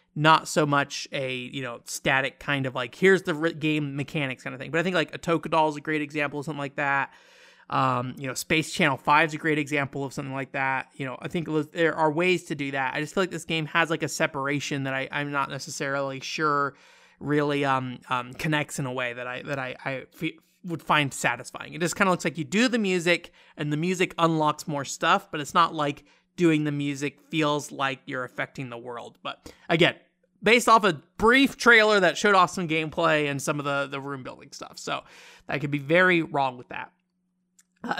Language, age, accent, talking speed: English, 30-49, American, 230 wpm